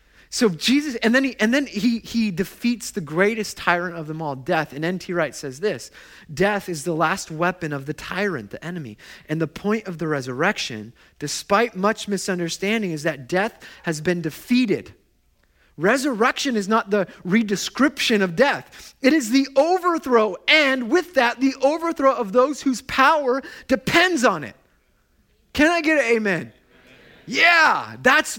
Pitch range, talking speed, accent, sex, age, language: 165-250 Hz, 165 wpm, American, male, 30-49, English